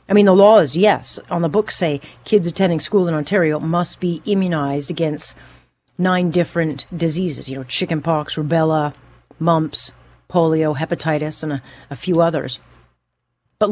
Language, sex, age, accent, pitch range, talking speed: English, female, 40-59, American, 135-180 Hz, 150 wpm